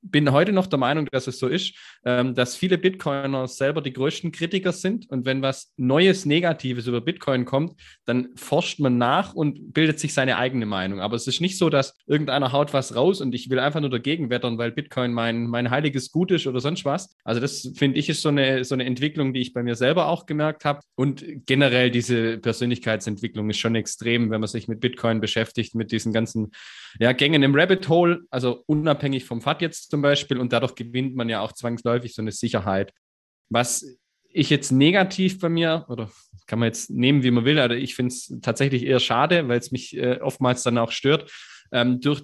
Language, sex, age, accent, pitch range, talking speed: German, male, 20-39, German, 120-150 Hz, 210 wpm